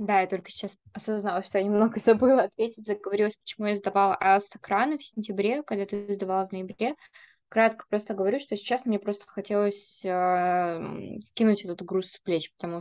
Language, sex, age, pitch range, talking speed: Russian, female, 20-39, 185-215 Hz, 175 wpm